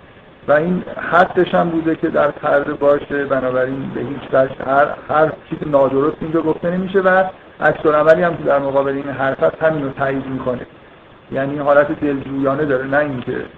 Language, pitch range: Persian, 135-155 Hz